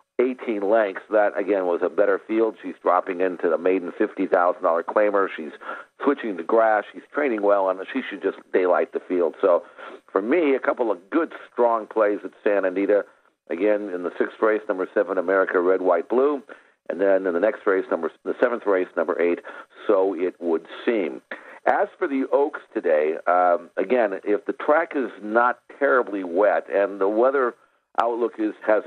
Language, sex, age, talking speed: English, male, 60-79, 180 wpm